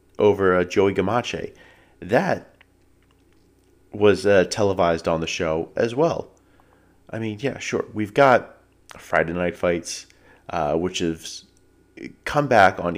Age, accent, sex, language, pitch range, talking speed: 30-49, American, male, English, 90-100 Hz, 130 wpm